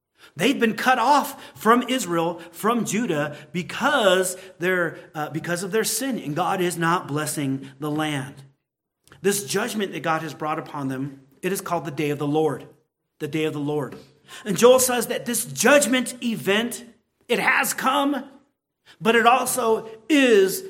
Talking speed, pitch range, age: 165 wpm, 155-225 Hz, 40-59